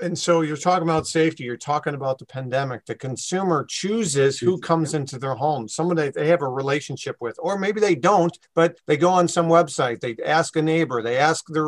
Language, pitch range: English, 140-165 Hz